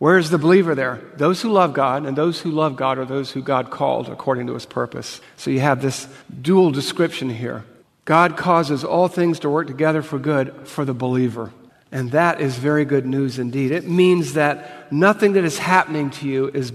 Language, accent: English, American